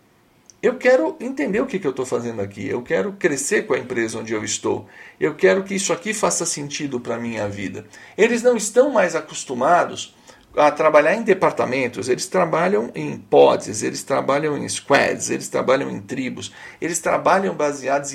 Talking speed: 175 wpm